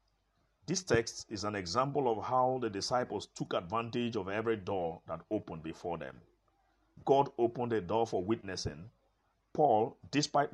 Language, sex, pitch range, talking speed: English, male, 95-125 Hz, 150 wpm